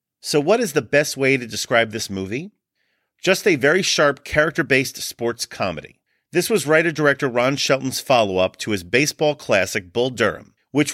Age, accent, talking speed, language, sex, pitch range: 40-59, American, 165 wpm, English, male, 115-150 Hz